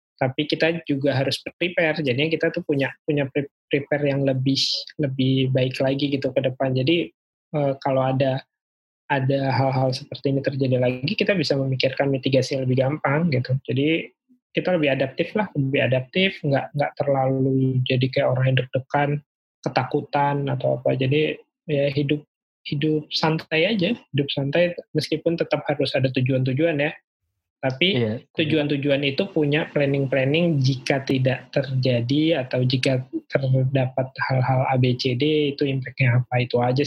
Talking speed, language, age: 140 wpm, Indonesian, 20-39